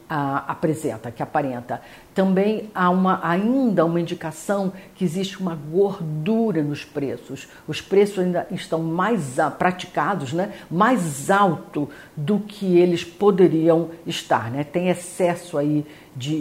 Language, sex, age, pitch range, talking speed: Portuguese, female, 50-69, 155-190 Hz, 130 wpm